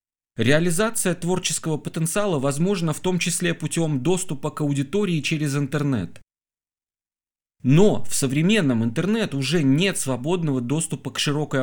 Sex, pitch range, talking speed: male, 130-175 Hz, 120 wpm